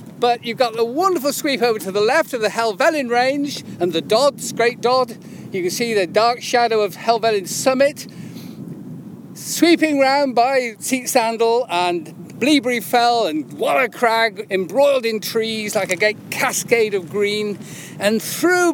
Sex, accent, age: male, British, 50-69